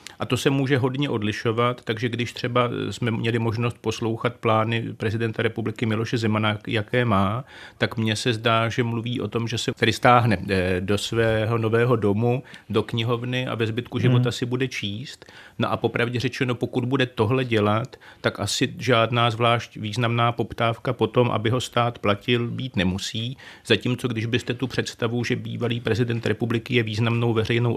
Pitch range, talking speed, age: 110-125 Hz, 170 wpm, 40-59